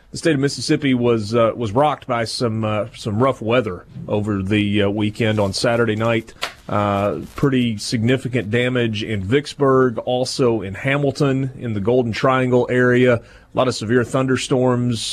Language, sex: English, male